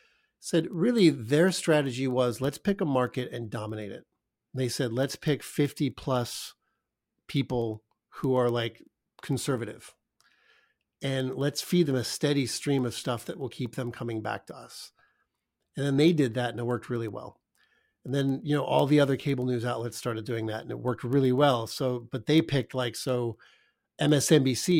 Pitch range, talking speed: 120-145 Hz, 180 wpm